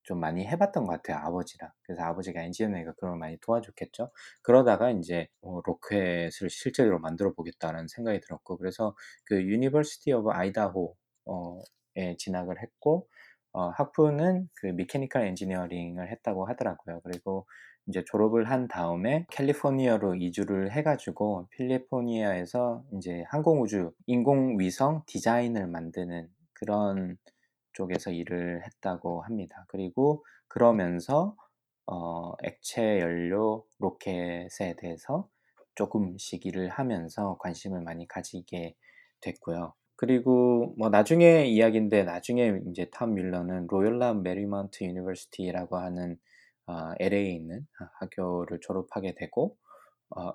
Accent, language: native, Korean